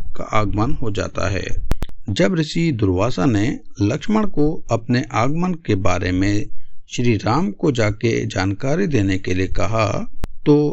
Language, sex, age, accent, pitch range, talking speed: Hindi, male, 50-69, native, 95-145 Hz, 145 wpm